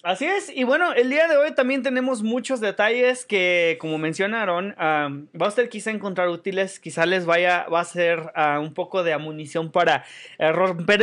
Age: 20-39